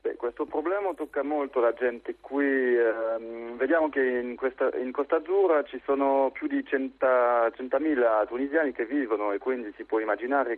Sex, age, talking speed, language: male, 40-59, 170 wpm, Italian